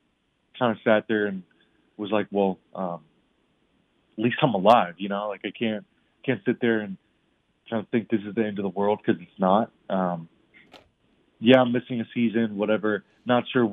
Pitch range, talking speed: 95-115 Hz, 190 wpm